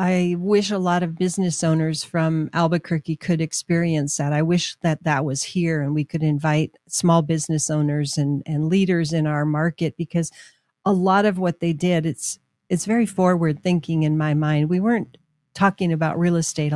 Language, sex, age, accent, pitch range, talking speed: English, female, 40-59, American, 155-180 Hz, 185 wpm